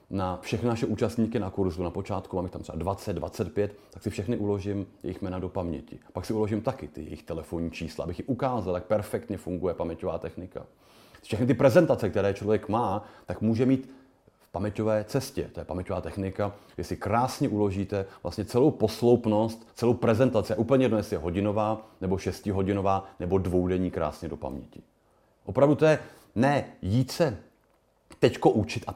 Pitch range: 95-125 Hz